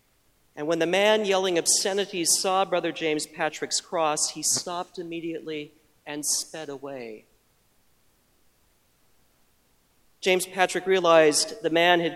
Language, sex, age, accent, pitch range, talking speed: English, male, 40-59, American, 155-180 Hz, 115 wpm